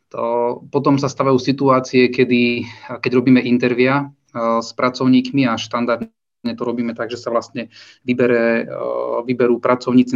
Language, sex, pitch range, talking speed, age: Slovak, male, 120-135 Hz, 130 wpm, 30-49